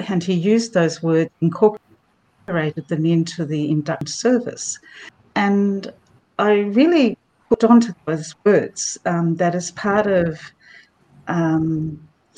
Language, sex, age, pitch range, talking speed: English, female, 50-69, 160-200 Hz, 115 wpm